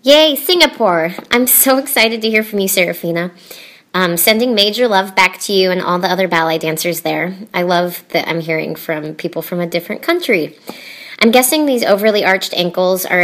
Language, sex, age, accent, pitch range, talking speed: English, male, 30-49, American, 165-205 Hz, 190 wpm